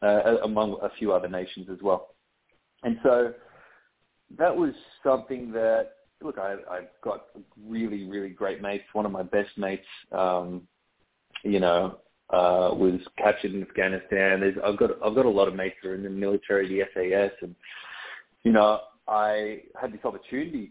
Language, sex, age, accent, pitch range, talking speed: English, male, 30-49, Australian, 95-105 Hz, 170 wpm